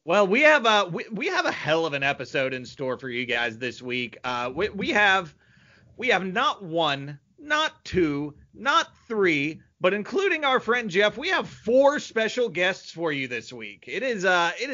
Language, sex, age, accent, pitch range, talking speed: English, male, 30-49, American, 135-195 Hz, 200 wpm